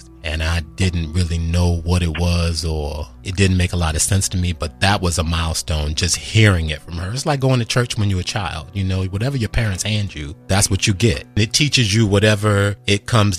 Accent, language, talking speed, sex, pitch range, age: American, English, 240 wpm, male, 85-120 Hz, 30-49